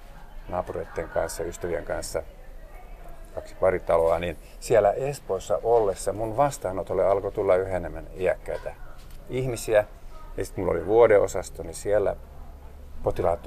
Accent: native